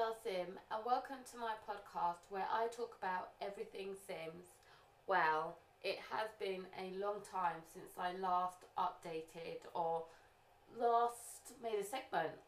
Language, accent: English, British